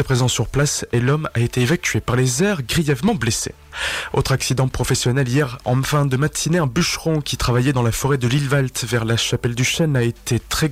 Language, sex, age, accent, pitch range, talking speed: French, male, 20-39, French, 120-155 Hz, 215 wpm